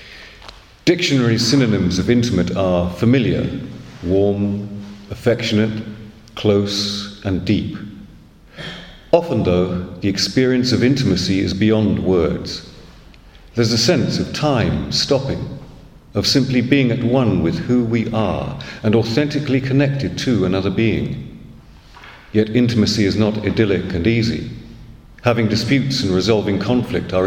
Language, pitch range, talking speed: English, 95-120 Hz, 120 wpm